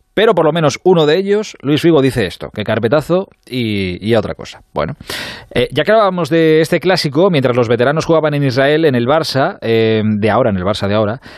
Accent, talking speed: Spanish, 220 wpm